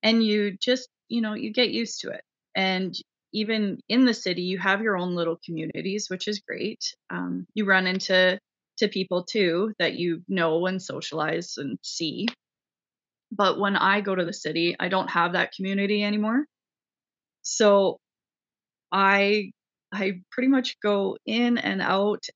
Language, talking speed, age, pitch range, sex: English, 160 wpm, 20-39, 185-230 Hz, female